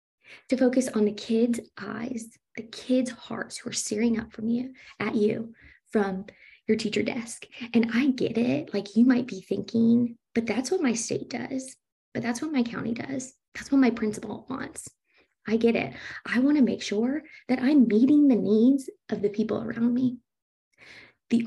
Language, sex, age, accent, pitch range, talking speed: English, female, 20-39, American, 210-250 Hz, 180 wpm